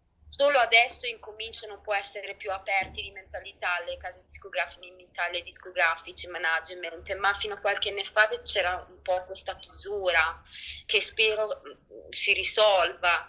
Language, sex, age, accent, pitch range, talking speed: Italian, female, 20-39, native, 180-210 Hz, 145 wpm